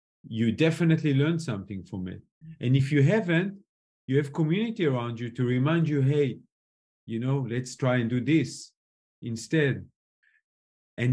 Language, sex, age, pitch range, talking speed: English, male, 40-59, 110-140 Hz, 150 wpm